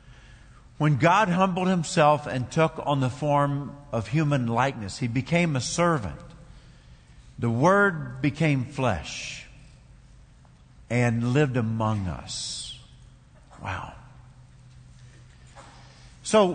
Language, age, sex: English, 50-69, male